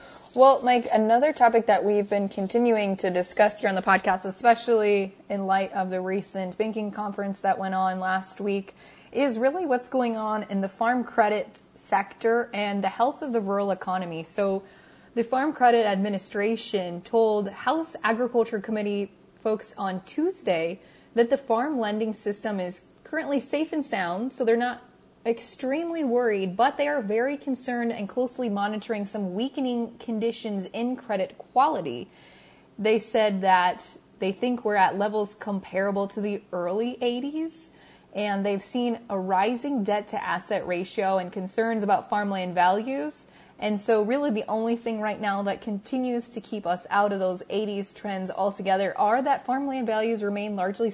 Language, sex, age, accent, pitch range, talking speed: English, female, 20-39, American, 195-235 Hz, 160 wpm